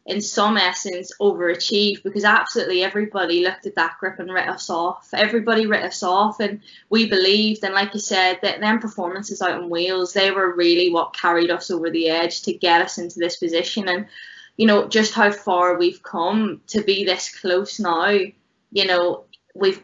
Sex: female